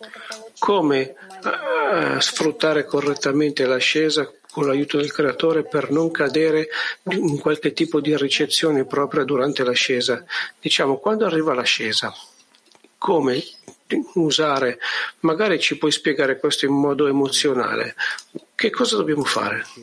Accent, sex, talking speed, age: native, male, 110 wpm, 50-69